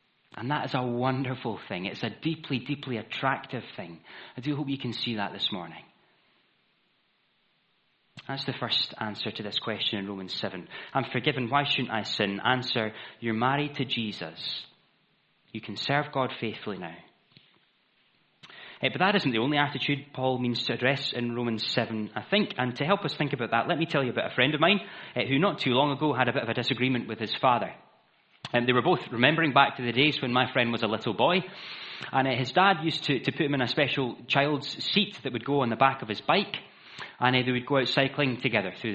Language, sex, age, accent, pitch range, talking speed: English, male, 30-49, British, 115-145 Hz, 215 wpm